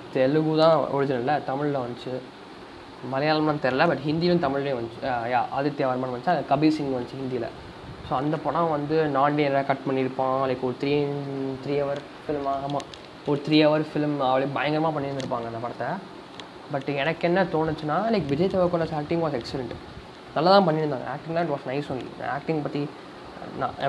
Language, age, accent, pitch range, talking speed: English, 20-39, Indian, 135-165 Hz, 125 wpm